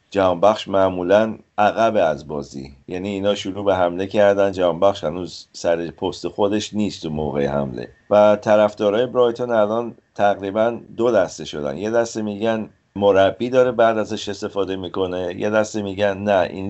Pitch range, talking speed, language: 90-110 Hz, 145 wpm, Persian